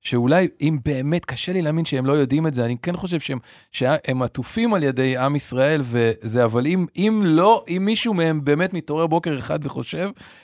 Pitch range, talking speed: 135-195 Hz, 170 wpm